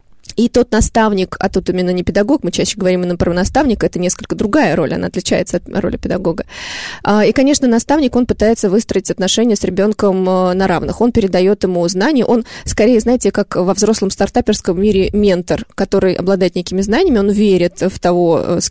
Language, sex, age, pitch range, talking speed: Russian, female, 20-39, 190-235 Hz, 180 wpm